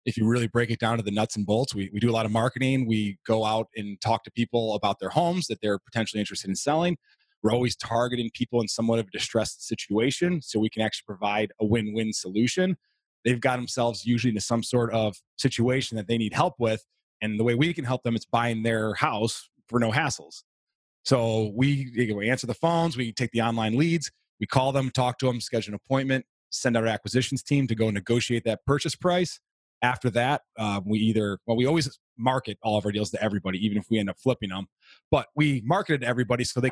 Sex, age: male, 30-49